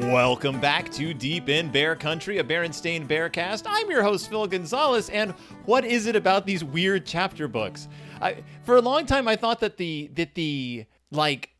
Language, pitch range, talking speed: English, 145-220 Hz, 190 wpm